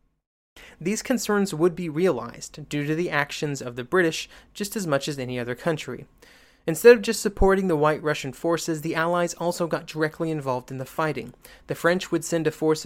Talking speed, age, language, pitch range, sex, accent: 195 wpm, 30-49, English, 145-180 Hz, male, American